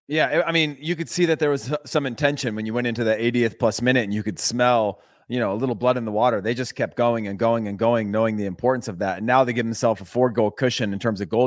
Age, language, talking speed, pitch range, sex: 30-49, English, 300 wpm, 115-145 Hz, male